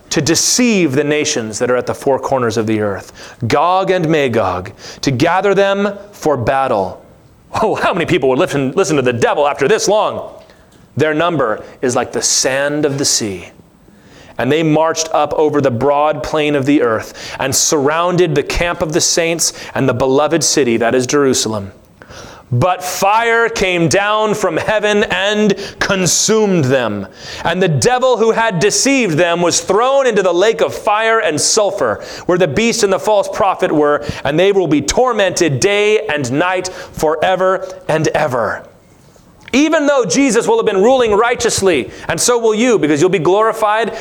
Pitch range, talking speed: 145-205 Hz, 175 wpm